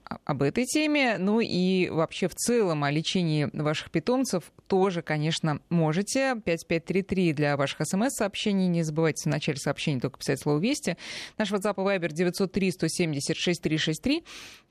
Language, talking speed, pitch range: Russian, 130 wpm, 155-195 Hz